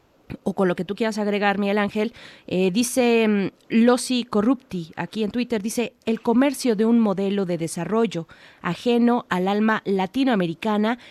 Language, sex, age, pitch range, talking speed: Italian, female, 30-49, 180-220 Hz, 150 wpm